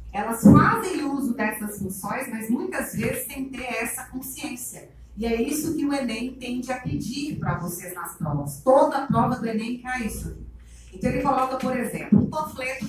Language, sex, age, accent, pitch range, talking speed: Portuguese, female, 30-49, Brazilian, 215-265 Hz, 180 wpm